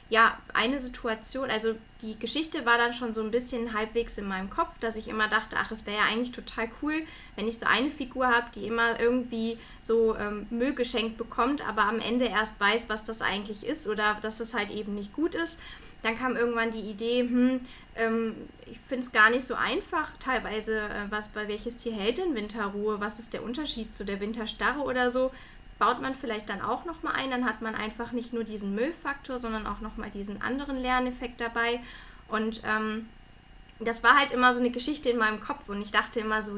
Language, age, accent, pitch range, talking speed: German, 10-29, German, 215-250 Hz, 215 wpm